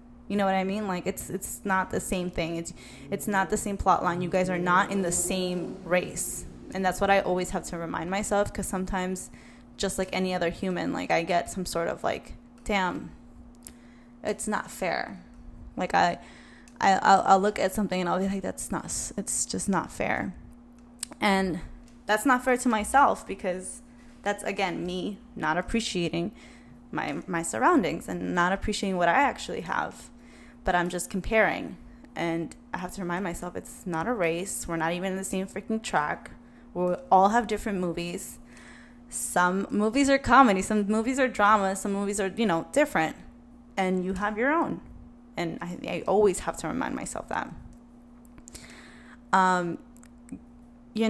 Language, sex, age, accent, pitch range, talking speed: English, female, 10-29, American, 175-225 Hz, 180 wpm